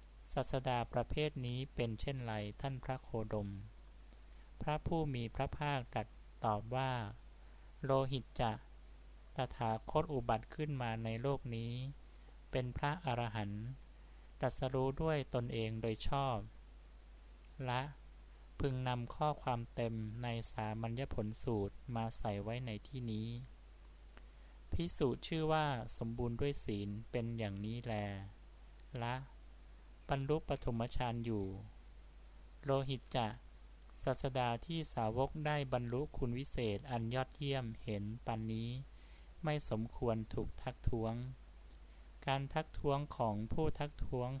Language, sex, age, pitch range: Thai, male, 20-39, 100-130 Hz